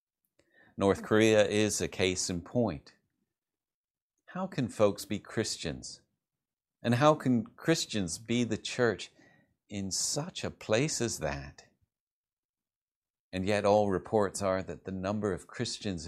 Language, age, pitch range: English, 50-69, 90-120 Hz